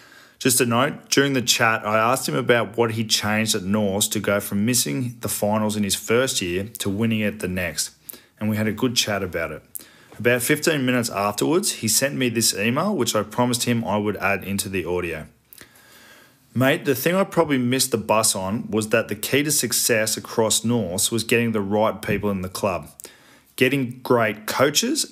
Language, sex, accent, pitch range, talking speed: English, male, Australian, 105-125 Hz, 205 wpm